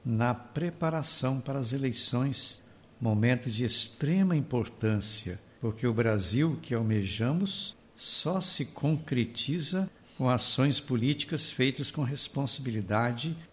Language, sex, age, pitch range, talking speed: Portuguese, male, 60-79, 110-145 Hz, 100 wpm